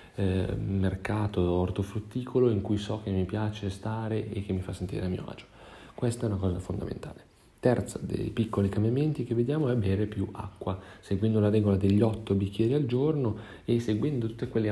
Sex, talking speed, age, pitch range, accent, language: male, 185 wpm, 30-49, 95-110 Hz, native, Italian